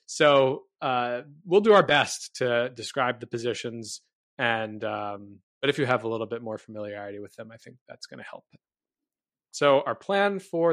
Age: 20-39